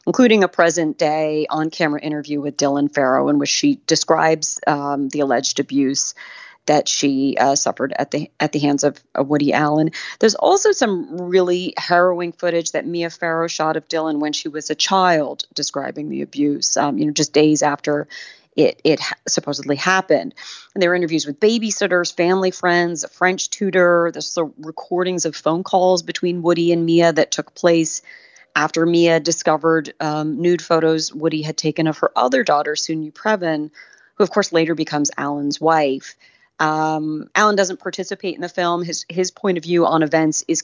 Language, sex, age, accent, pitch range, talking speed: English, female, 30-49, American, 150-175 Hz, 175 wpm